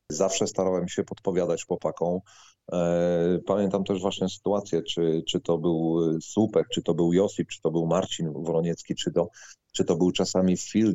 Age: 40-59